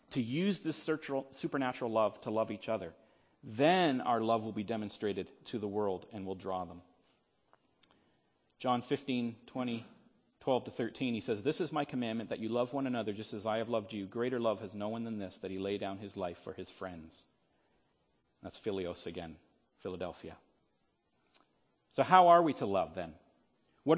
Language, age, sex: English, 40-59, male